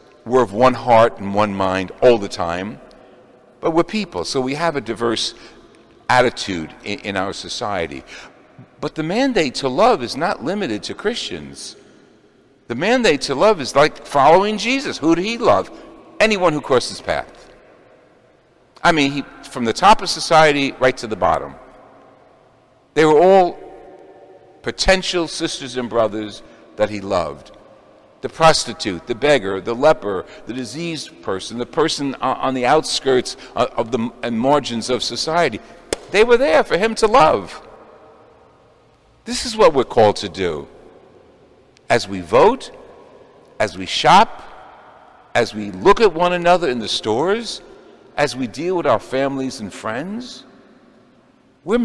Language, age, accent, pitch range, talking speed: English, 60-79, American, 125-185 Hz, 150 wpm